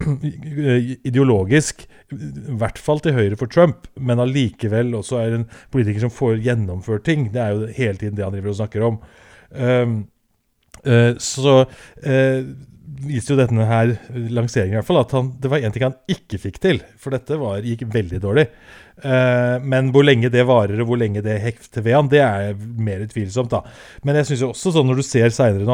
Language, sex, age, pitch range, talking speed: English, male, 30-49, 105-130 Hz, 195 wpm